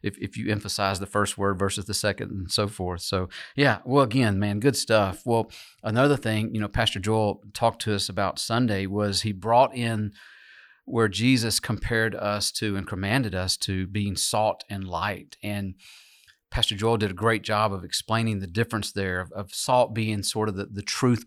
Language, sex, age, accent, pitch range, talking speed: English, male, 40-59, American, 100-120 Hz, 200 wpm